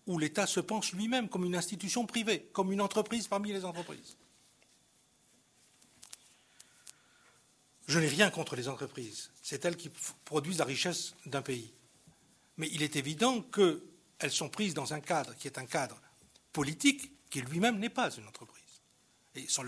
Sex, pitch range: male, 135-185 Hz